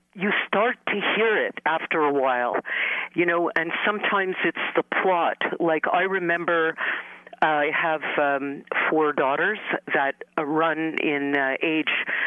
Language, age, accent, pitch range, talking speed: English, 50-69, American, 140-205 Hz, 135 wpm